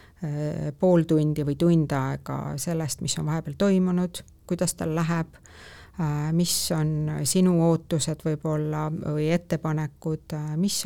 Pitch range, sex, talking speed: 155-180 Hz, female, 115 wpm